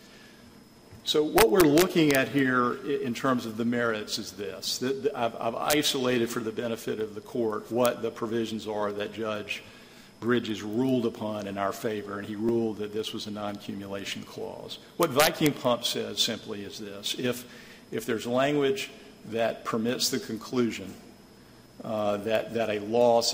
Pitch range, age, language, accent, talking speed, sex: 110-125 Hz, 50-69, English, American, 160 wpm, male